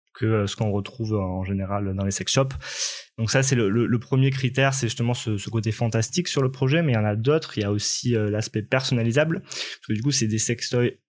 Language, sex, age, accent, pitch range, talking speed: French, male, 20-39, French, 105-130 Hz, 260 wpm